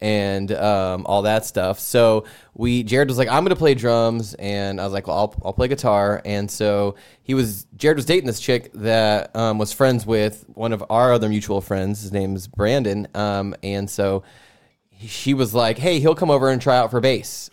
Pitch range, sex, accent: 100-120 Hz, male, American